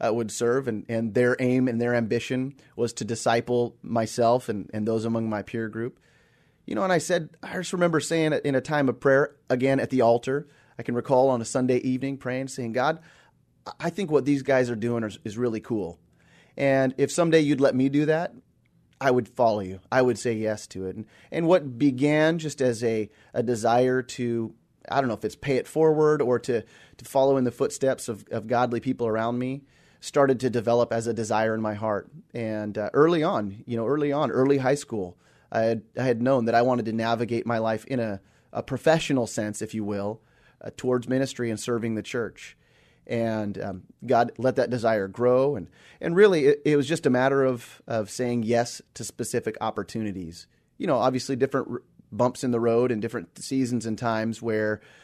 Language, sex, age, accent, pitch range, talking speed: English, male, 30-49, American, 115-135 Hz, 210 wpm